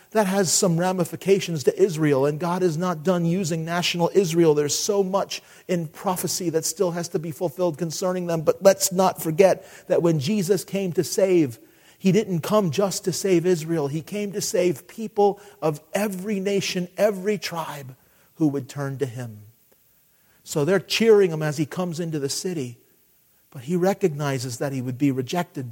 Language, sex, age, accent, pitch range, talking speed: English, male, 40-59, American, 135-185 Hz, 180 wpm